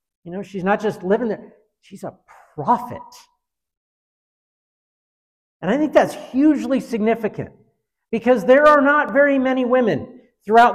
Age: 50-69